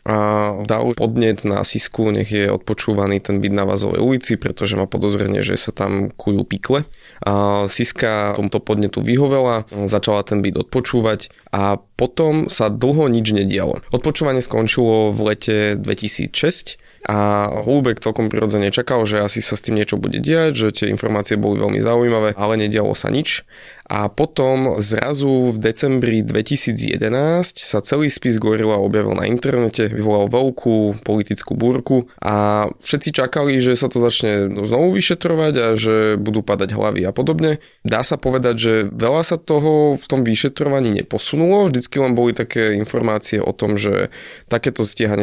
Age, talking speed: 20-39, 155 wpm